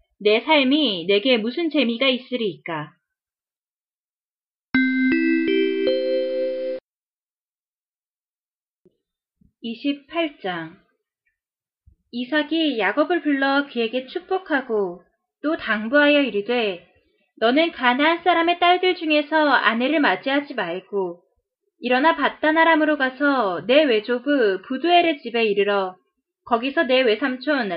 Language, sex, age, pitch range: Korean, female, 20-39, 210-310 Hz